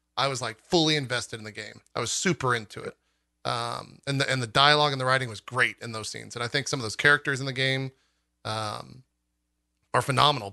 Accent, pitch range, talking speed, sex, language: American, 105-135 Hz, 230 wpm, male, English